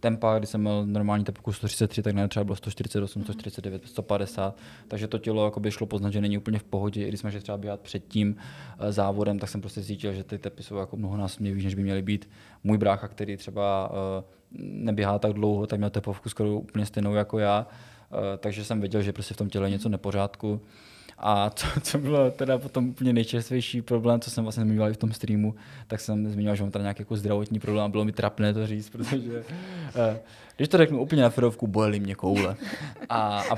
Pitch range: 105-120 Hz